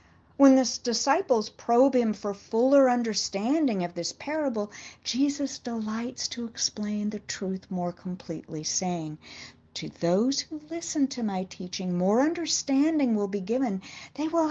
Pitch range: 195-270 Hz